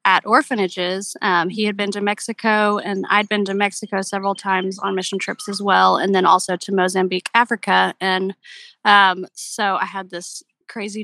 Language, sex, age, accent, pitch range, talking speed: English, female, 20-39, American, 195-250 Hz, 180 wpm